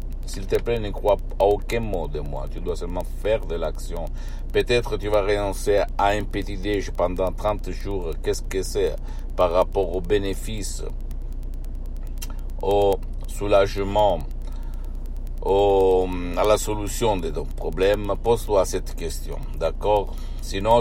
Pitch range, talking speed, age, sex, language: 85-100 Hz, 145 wpm, 60-79, male, Italian